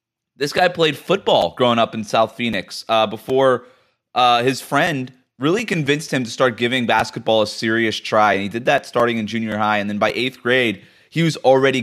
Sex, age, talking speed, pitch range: male, 20-39, 200 wpm, 115-140 Hz